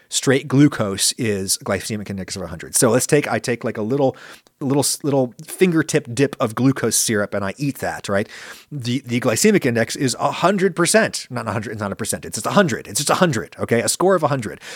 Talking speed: 230 wpm